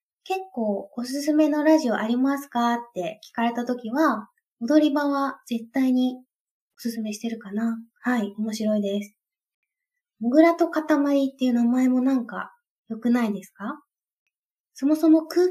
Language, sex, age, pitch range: Japanese, female, 20-39, 220-295 Hz